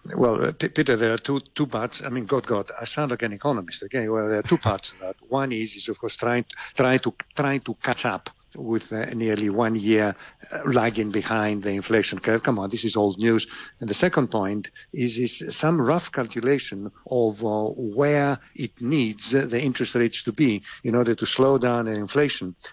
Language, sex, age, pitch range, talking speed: English, male, 50-69, 110-135 Hz, 220 wpm